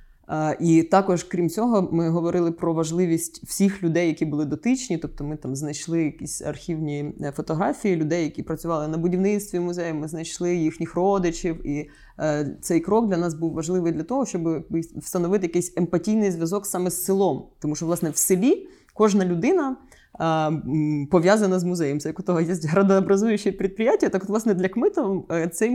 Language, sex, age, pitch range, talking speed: Ukrainian, female, 20-39, 160-200 Hz, 165 wpm